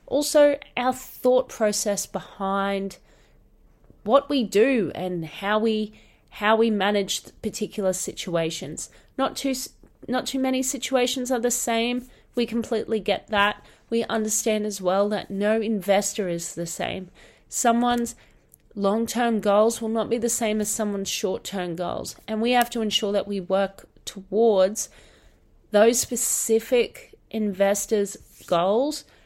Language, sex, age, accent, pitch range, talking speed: English, female, 30-49, Australian, 200-245 Hz, 130 wpm